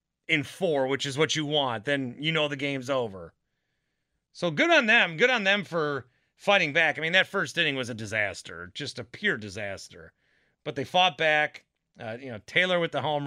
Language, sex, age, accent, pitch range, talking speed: English, male, 30-49, American, 120-155 Hz, 210 wpm